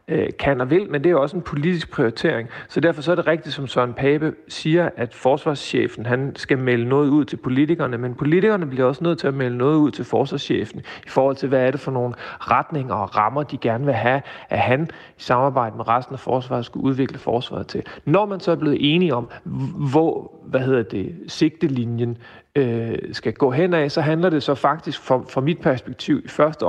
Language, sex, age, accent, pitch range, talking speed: Danish, male, 40-59, native, 120-150 Hz, 215 wpm